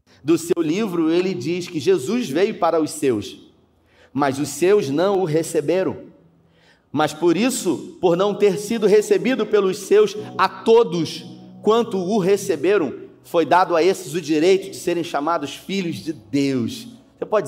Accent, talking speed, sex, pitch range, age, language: Brazilian, 160 wpm, male, 165-205 Hz, 30-49, Portuguese